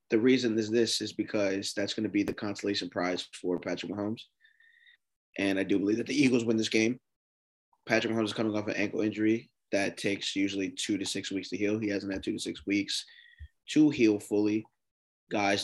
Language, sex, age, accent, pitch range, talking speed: English, male, 20-39, American, 100-115 Hz, 205 wpm